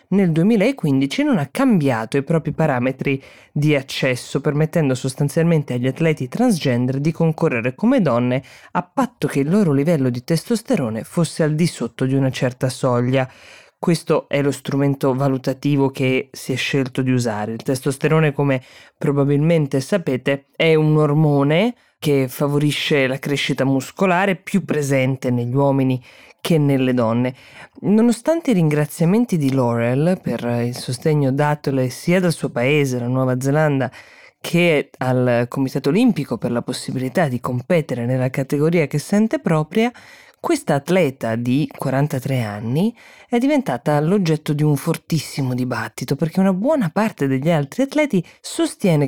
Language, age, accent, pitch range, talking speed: Italian, 20-39, native, 130-170 Hz, 140 wpm